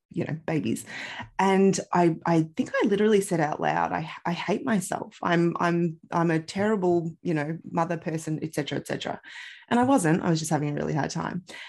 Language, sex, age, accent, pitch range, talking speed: English, female, 20-39, Australian, 165-210 Hz, 205 wpm